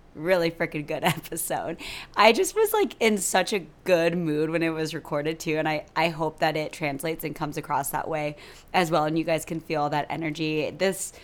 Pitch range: 155-185 Hz